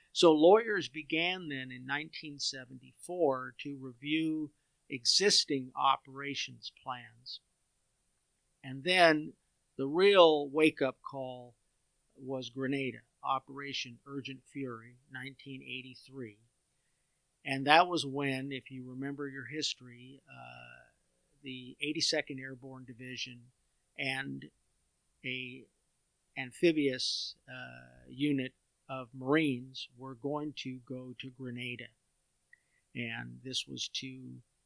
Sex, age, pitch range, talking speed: male, 50-69, 125-150 Hz, 95 wpm